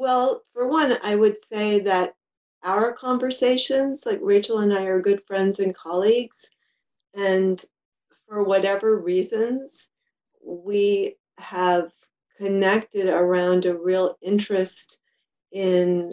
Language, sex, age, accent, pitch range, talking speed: English, female, 40-59, American, 180-220 Hz, 110 wpm